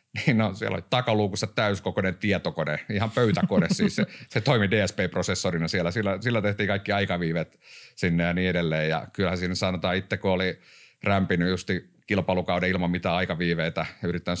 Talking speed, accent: 160 wpm, native